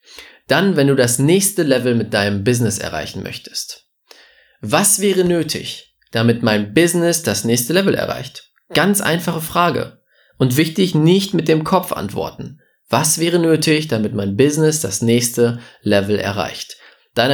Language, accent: German, German